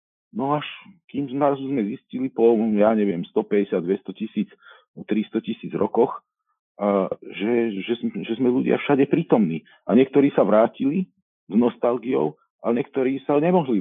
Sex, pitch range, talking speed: male, 100-120 Hz, 145 wpm